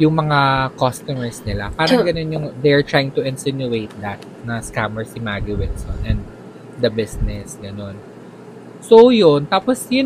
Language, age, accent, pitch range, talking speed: Filipino, 20-39, native, 115-160 Hz, 150 wpm